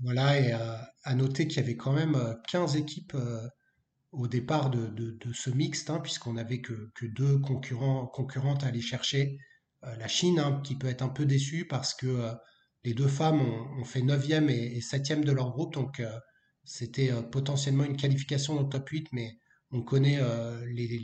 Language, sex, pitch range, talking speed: French, male, 125-140 Hz, 205 wpm